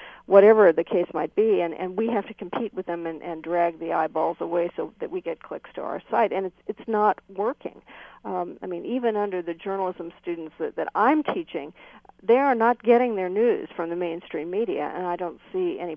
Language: English